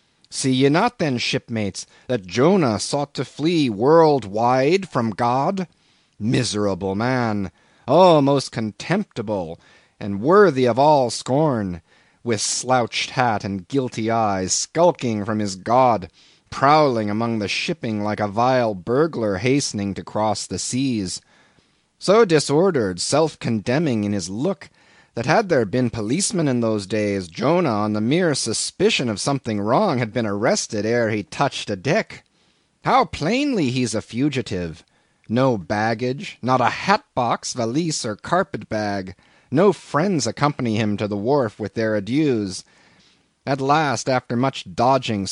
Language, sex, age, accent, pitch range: Korean, male, 30-49, American, 105-140 Hz